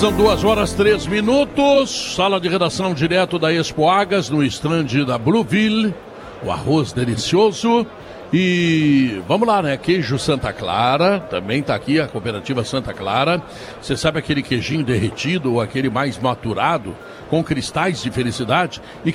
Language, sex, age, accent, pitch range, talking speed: Portuguese, male, 60-79, Brazilian, 135-185 Hz, 145 wpm